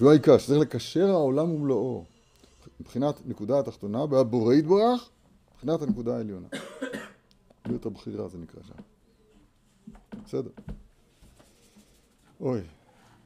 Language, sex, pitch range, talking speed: Hebrew, male, 105-150 Hz, 100 wpm